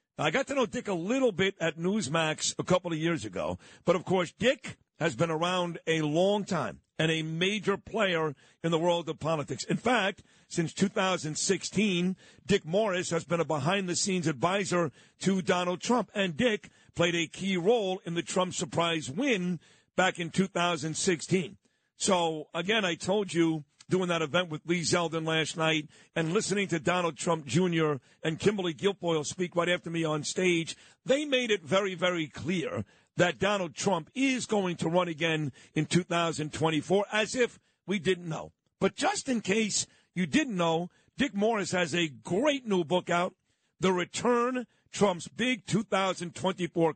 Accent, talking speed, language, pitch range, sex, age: American, 165 wpm, English, 165-200 Hz, male, 50-69